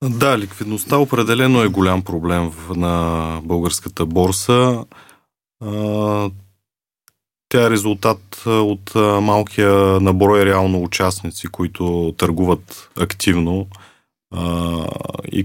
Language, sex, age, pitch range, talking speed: Bulgarian, male, 20-39, 90-105 Hz, 80 wpm